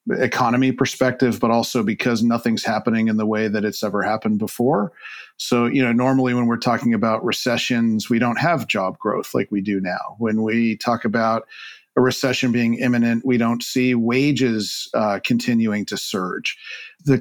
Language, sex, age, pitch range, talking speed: English, male, 40-59, 115-130 Hz, 175 wpm